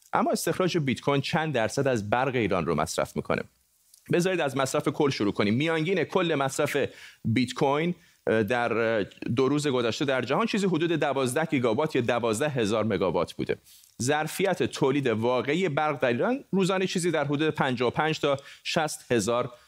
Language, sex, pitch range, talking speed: Persian, male, 125-160 Hz, 150 wpm